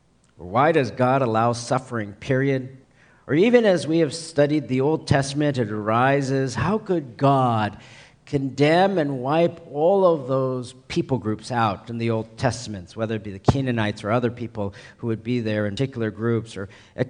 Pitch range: 115-140 Hz